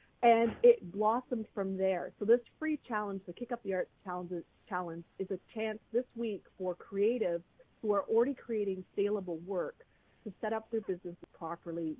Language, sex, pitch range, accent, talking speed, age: English, female, 165-200 Hz, American, 175 wpm, 40-59